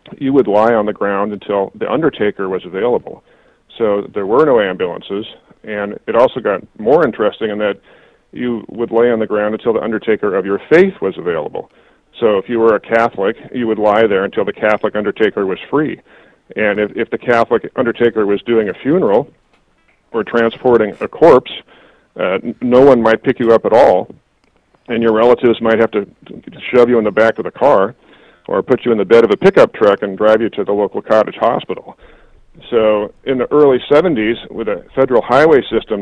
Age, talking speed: 40-59, 200 wpm